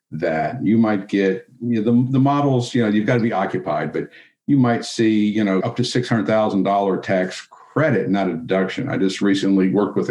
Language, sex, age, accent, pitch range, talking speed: English, male, 50-69, American, 95-120 Hz, 195 wpm